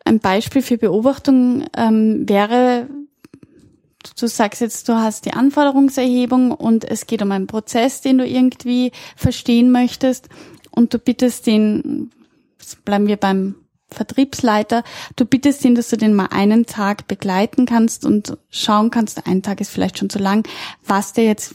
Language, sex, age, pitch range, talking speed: German, female, 10-29, 210-250 Hz, 155 wpm